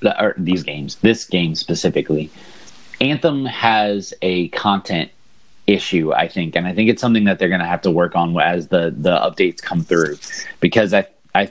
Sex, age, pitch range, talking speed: male, 30-49, 90-115 Hz, 185 wpm